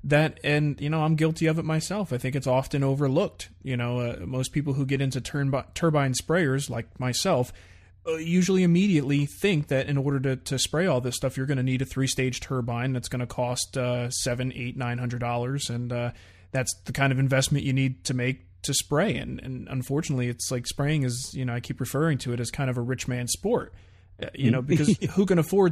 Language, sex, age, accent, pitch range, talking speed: English, male, 30-49, American, 120-145 Hz, 225 wpm